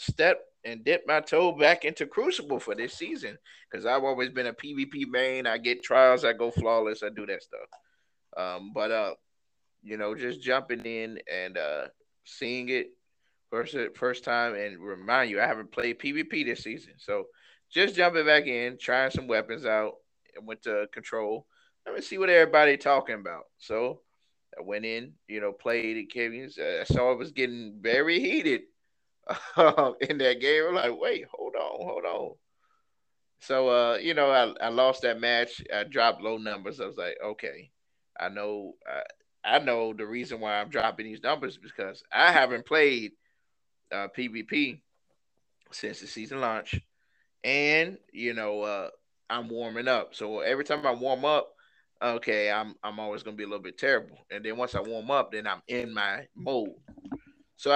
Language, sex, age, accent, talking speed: English, male, 20-39, American, 180 wpm